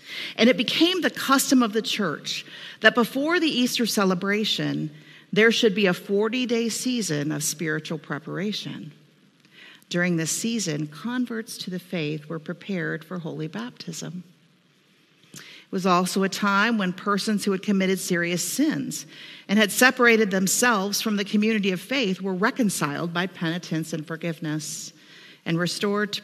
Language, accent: English, American